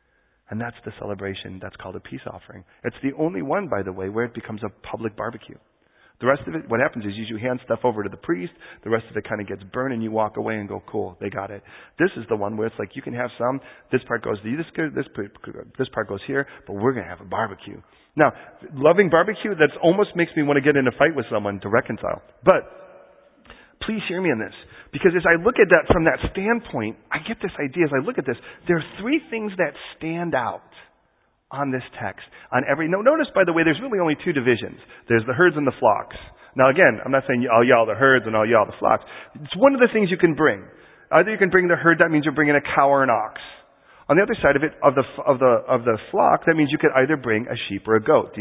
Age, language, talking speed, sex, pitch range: 40-59, English, 265 wpm, male, 110-170 Hz